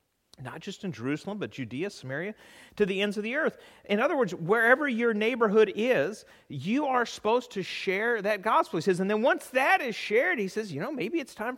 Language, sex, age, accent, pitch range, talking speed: English, male, 40-59, American, 170-235 Hz, 220 wpm